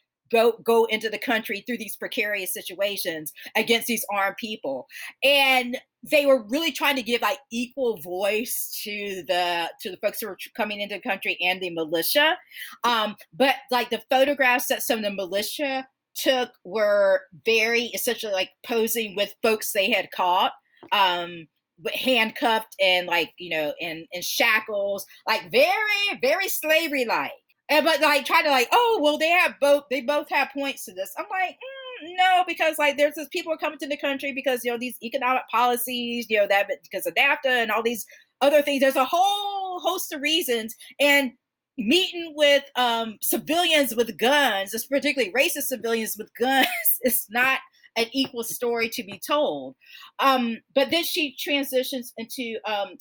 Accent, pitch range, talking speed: American, 210-290 Hz, 170 wpm